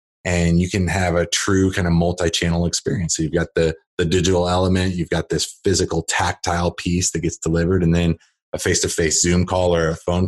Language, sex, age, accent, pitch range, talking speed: English, male, 30-49, American, 80-95 Hz, 205 wpm